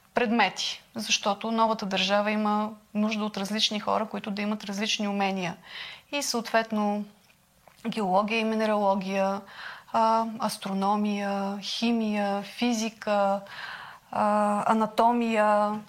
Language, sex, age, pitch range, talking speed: Bulgarian, female, 30-49, 200-230 Hz, 95 wpm